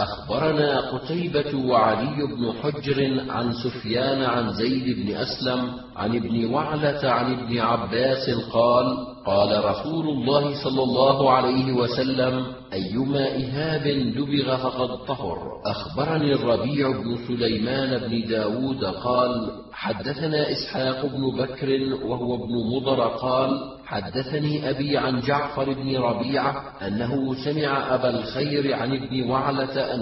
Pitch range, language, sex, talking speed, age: 120-135 Hz, Arabic, male, 115 wpm, 40-59